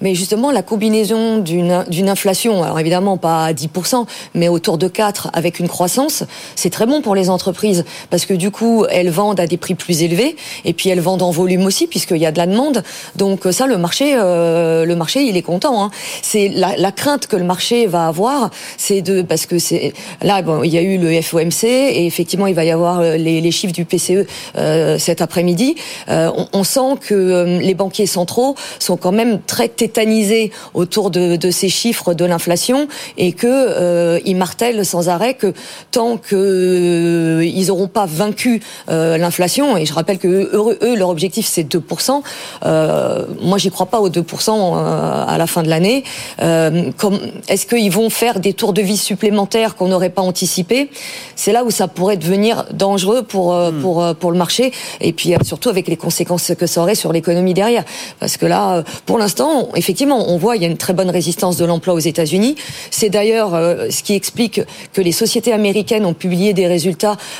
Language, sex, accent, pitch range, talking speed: French, female, French, 175-215 Hz, 200 wpm